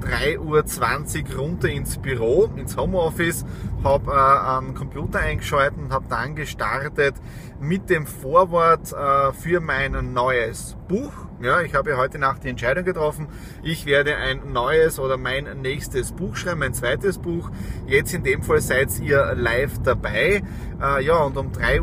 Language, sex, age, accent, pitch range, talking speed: German, male, 30-49, Austrian, 120-150 Hz, 155 wpm